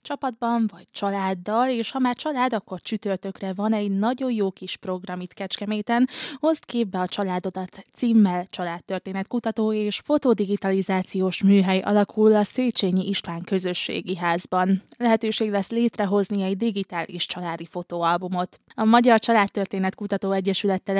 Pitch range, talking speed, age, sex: 185-220 Hz, 125 wpm, 20-39, female